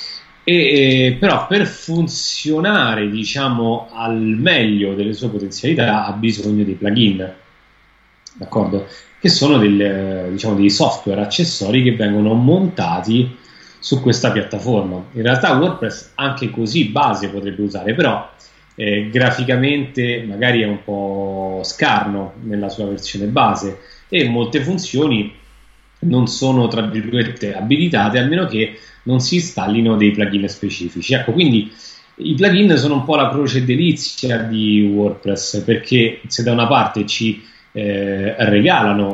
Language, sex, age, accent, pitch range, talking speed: Italian, male, 30-49, native, 105-125 Hz, 130 wpm